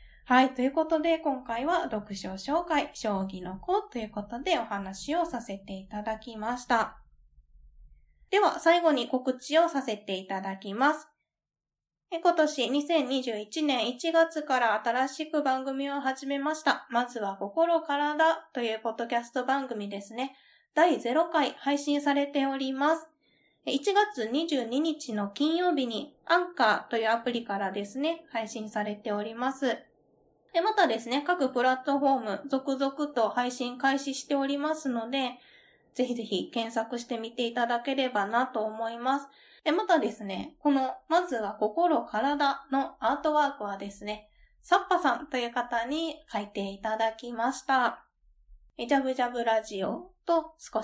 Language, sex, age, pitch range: Japanese, female, 20-39, 225-300 Hz